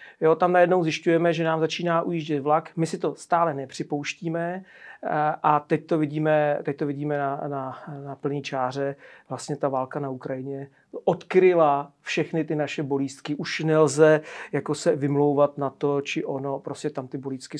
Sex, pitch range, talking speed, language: male, 145-165 Hz, 165 wpm, Czech